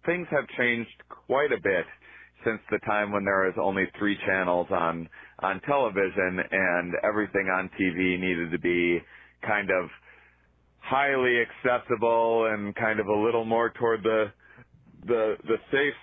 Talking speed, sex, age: 150 wpm, male, 30-49